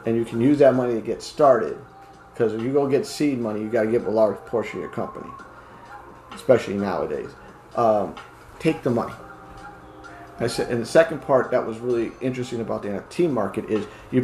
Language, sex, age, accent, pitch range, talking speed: English, male, 40-59, American, 110-130 Hz, 200 wpm